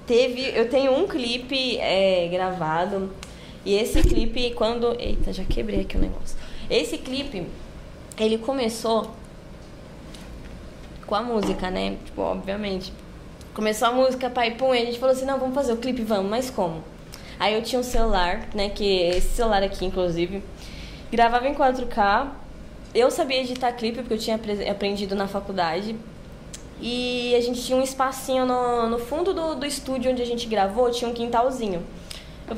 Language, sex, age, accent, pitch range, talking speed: Portuguese, female, 20-39, Brazilian, 200-255 Hz, 170 wpm